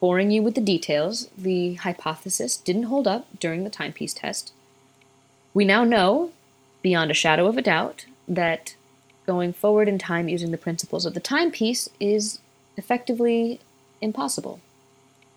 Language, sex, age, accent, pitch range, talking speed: English, female, 20-39, American, 135-210 Hz, 145 wpm